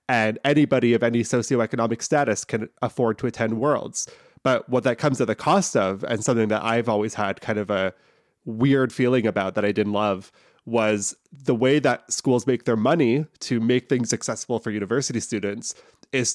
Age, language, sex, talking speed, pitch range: 20-39, English, male, 185 wpm, 105-130 Hz